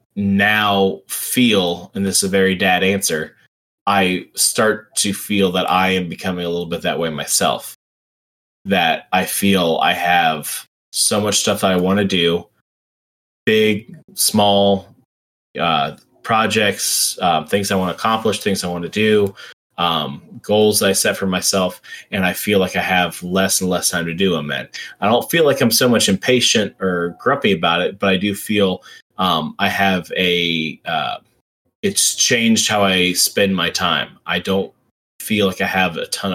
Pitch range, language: 90-100 Hz, English